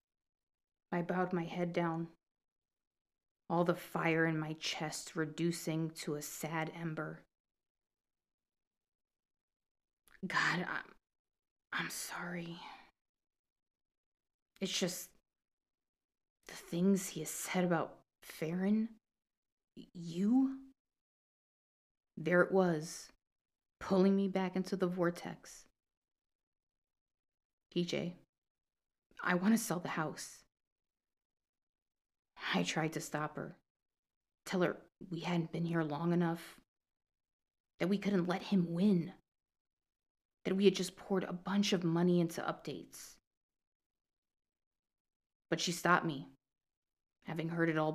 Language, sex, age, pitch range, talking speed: English, female, 30-49, 160-190 Hz, 105 wpm